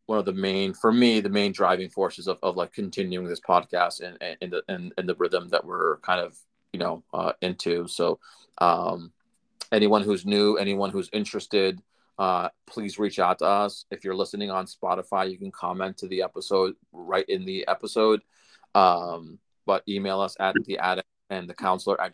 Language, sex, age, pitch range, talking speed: English, male, 30-49, 90-105 Hz, 190 wpm